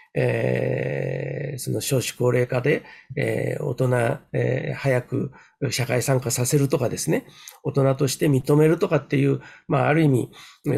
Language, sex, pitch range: Japanese, male, 125-155 Hz